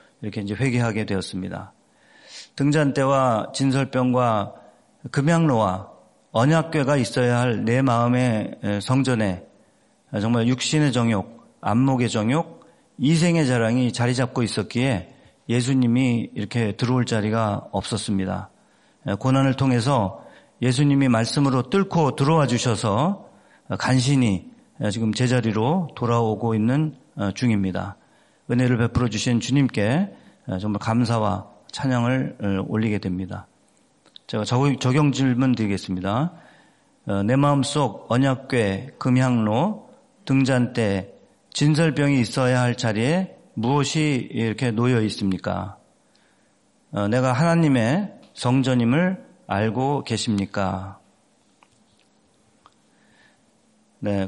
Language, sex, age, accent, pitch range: Korean, male, 40-59, native, 110-140 Hz